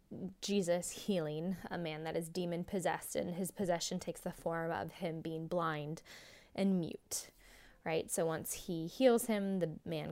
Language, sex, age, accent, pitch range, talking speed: English, female, 10-29, American, 175-230 Hz, 160 wpm